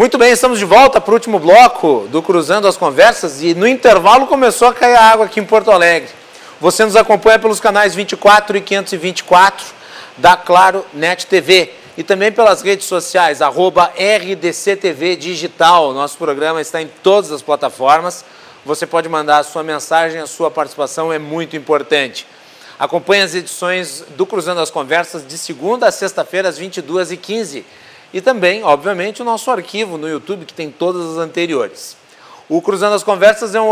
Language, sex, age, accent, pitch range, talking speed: Portuguese, male, 40-59, Brazilian, 165-210 Hz, 170 wpm